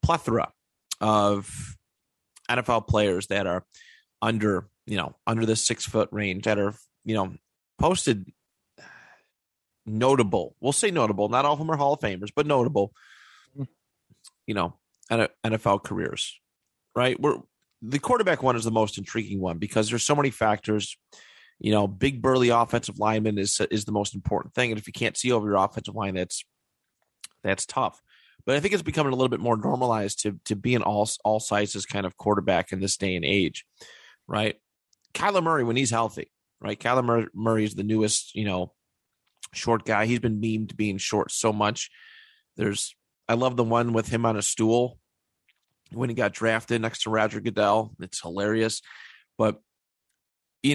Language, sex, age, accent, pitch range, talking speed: English, male, 30-49, American, 105-125 Hz, 170 wpm